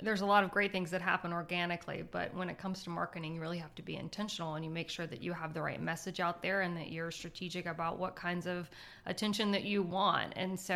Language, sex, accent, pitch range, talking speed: English, female, American, 175-195 Hz, 260 wpm